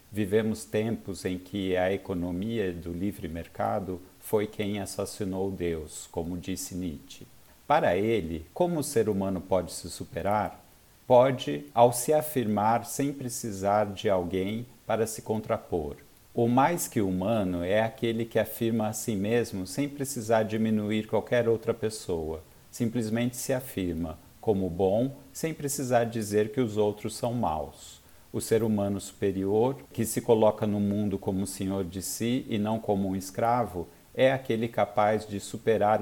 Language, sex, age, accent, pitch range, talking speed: Portuguese, male, 50-69, Brazilian, 95-115 Hz, 150 wpm